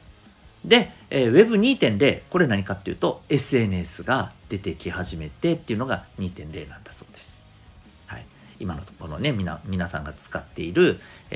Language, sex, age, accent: Japanese, male, 40-59, native